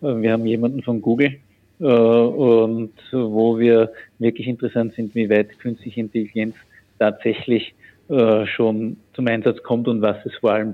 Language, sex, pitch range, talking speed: German, male, 110-120 Hz, 150 wpm